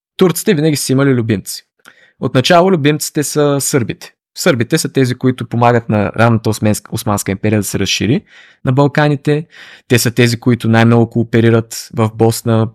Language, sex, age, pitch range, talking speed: Bulgarian, male, 20-39, 110-135 Hz, 150 wpm